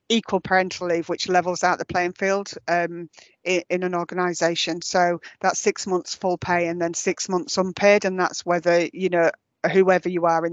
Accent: British